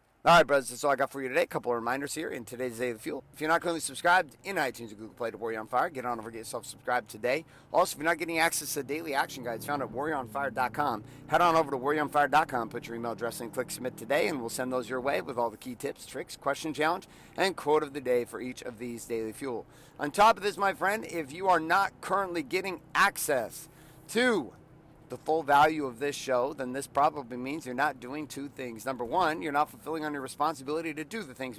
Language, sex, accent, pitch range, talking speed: English, male, American, 125-165 Hz, 250 wpm